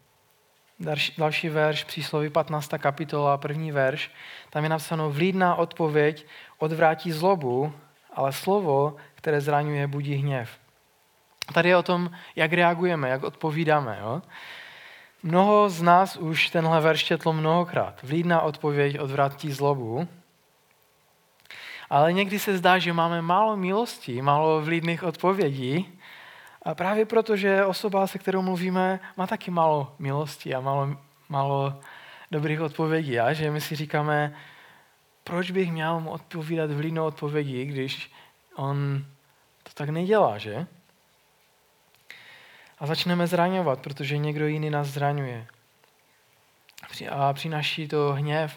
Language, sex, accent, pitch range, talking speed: Czech, male, native, 145-175 Hz, 120 wpm